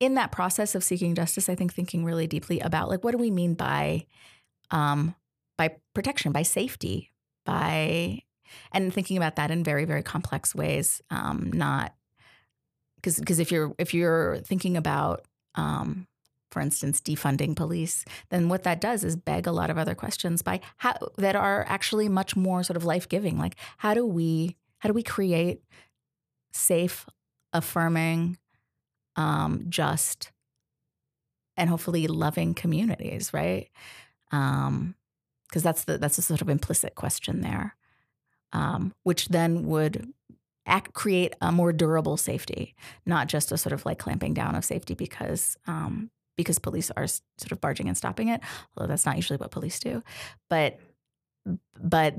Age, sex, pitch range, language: 30-49, female, 155-185 Hz, English